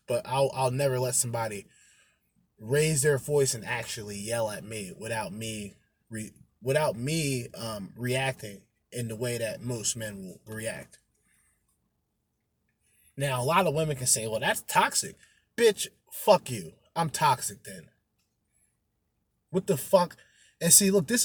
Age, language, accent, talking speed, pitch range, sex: 20-39, English, American, 145 wpm, 120-175 Hz, male